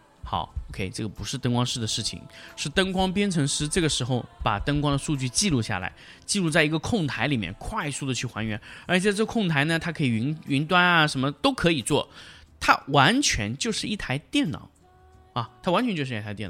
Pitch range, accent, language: 120-180 Hz, native, Chinese